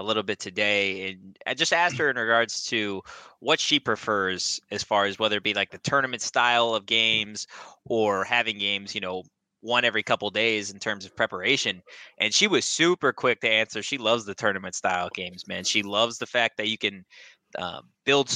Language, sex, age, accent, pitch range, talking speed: English, male, 20-39, American, 105-125 Hz, 210 wpm